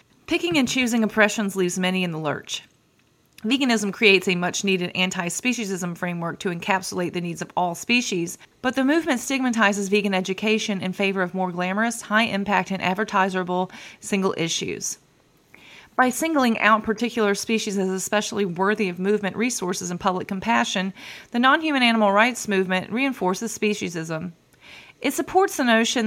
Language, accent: English, American